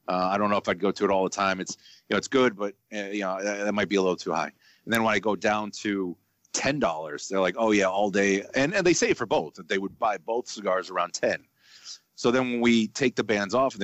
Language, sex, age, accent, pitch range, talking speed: English, male, 30-49, American, 95-110 Hz, 290 wpm